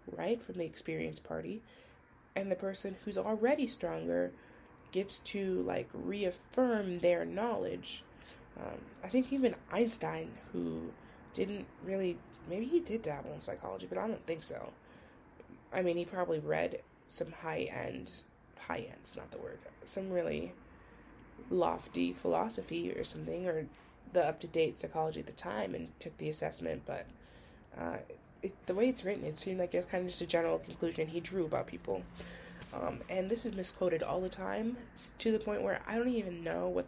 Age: 20-39